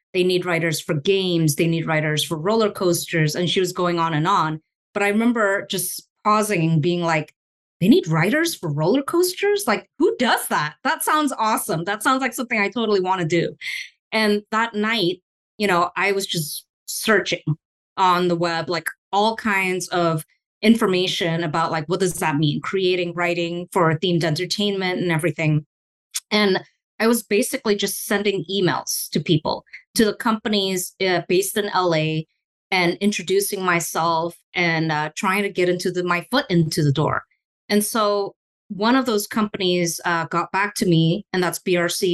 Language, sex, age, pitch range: English, female, 20-39, 170-205 Hz